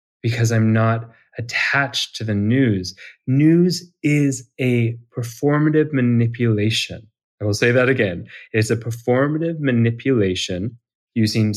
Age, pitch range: 30-49, 105-135 Hz